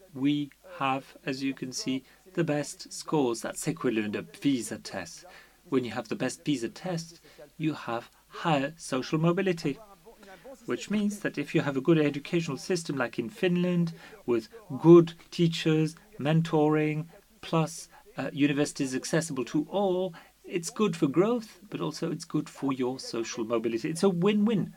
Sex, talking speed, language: male, 155 wpm, English